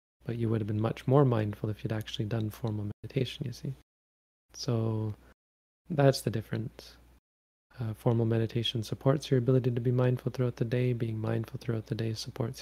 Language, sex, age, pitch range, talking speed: English, male, 20-39, 110-120 Hz, 180 wpm